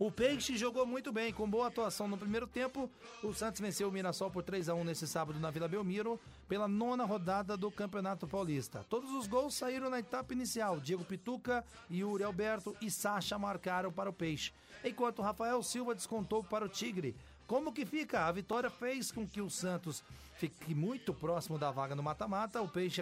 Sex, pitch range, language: male, 185-245 Hz, Portuguese